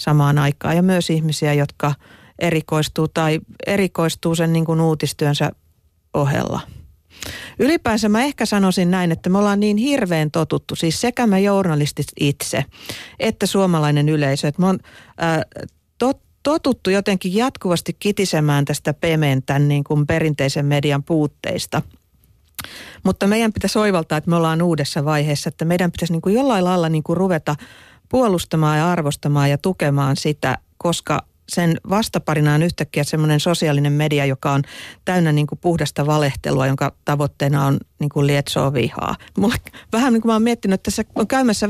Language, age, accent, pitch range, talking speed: Finnish, 40-59, native, 150-195 Hz, 150 wpm